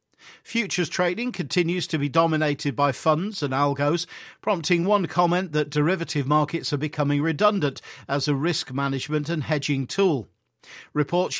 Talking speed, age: 140 wpm, 50-69